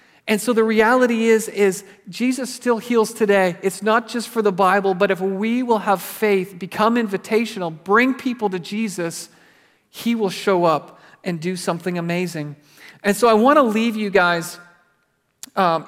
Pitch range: 190-235 Hz